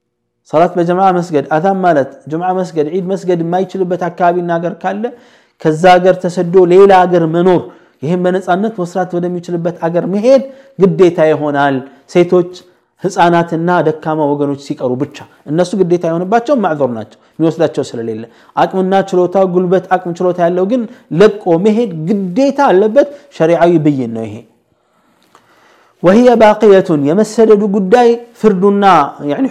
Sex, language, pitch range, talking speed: male, Amharic, 165-205 Hz, 130 wpm